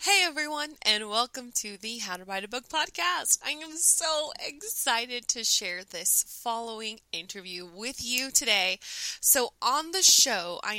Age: 20-39